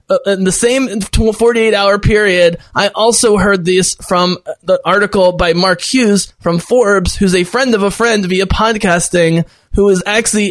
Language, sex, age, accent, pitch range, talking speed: English, male, 20-39, American, 165-205 Hz, 165 wpm